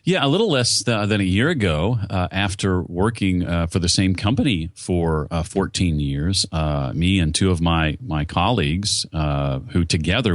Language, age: English, 30-49